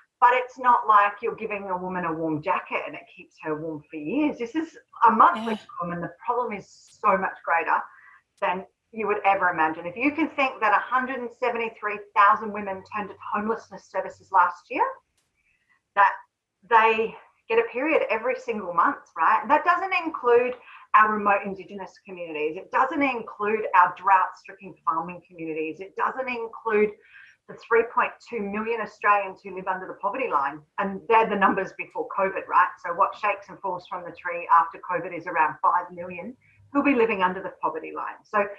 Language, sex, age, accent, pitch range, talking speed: English, female, 40-59, Australian, 185-240 Hz, 175 wpm